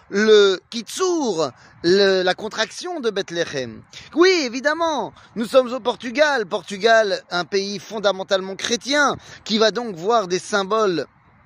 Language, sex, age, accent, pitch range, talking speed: French, male, 30-49, French, 165-230 Hz, 120 wpm